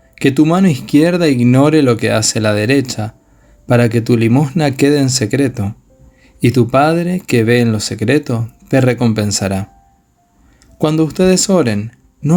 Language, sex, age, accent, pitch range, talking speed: Spanish, male, 20-39, Argentinian, 110-140 Hz, 150 wpm